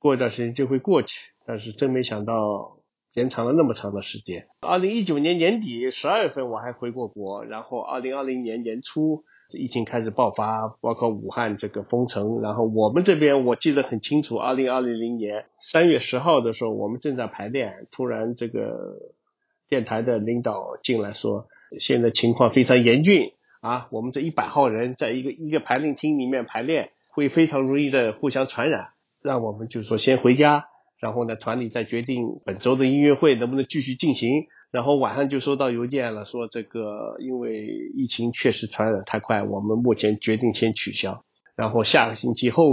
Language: Chinese